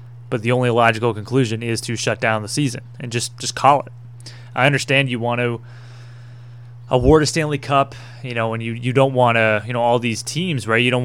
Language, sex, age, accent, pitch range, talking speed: English, male, 20-39, American, 115-130 Hz, 225 wpm